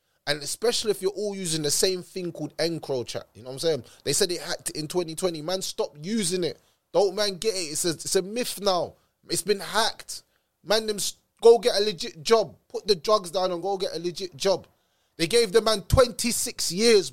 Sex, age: male, 20-39